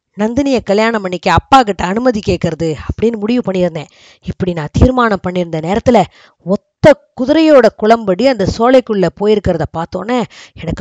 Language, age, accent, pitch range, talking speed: Tamil, 20-39, native, 185-255 Hz, 120 wpm